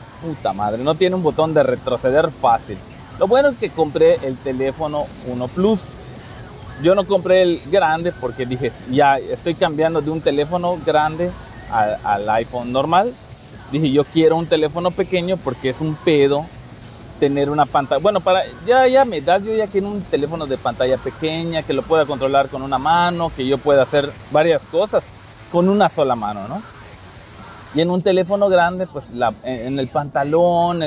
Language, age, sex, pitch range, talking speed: Spanish, 30-49, male, 125-180 Hz, 175 wpm